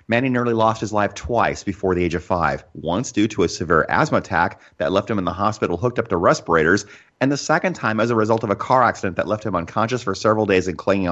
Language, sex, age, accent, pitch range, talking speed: English, male, 30-49, American, 85-115 Hz, 260 wpm